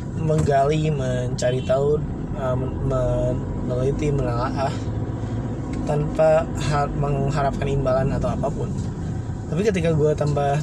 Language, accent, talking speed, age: Indonesian, native, 90 wpm, 20-39